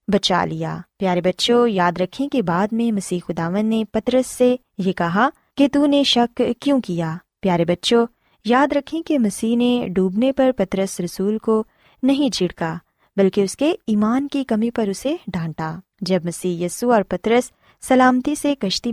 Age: 20-39